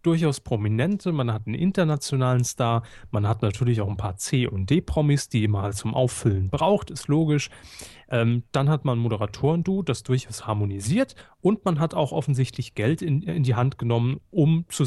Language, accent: German, German